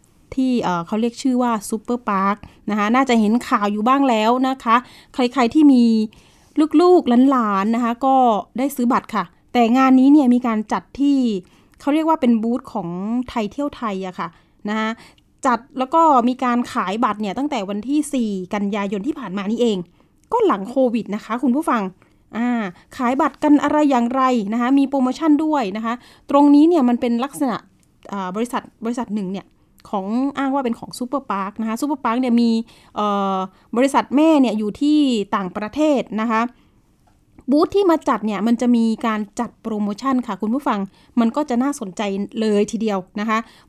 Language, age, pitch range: Thai, 20-39, 215-270 Hz